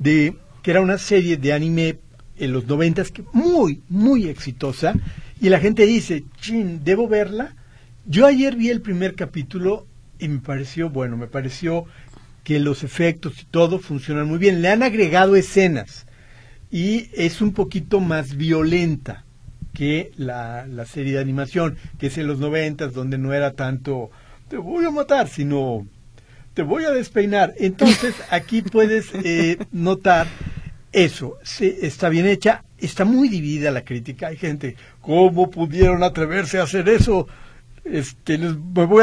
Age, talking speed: 50-69, 150 wpm